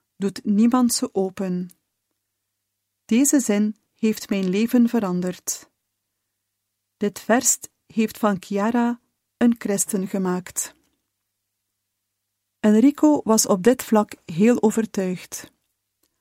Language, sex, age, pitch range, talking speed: Dutch, female, 40-59, 180-230 Hz, 95 wpm